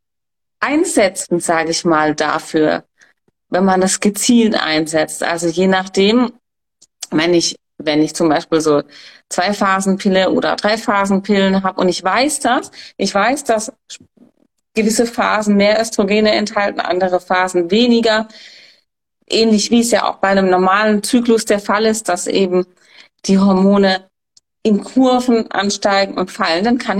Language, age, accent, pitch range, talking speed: German, 30-49, German, 190-235 Hz, 140 wpm